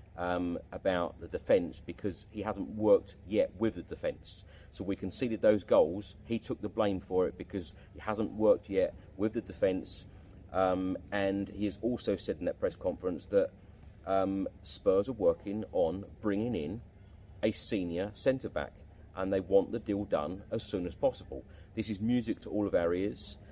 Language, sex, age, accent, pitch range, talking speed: English, male, 30-49, British, 90-110 Hz, 175 wpm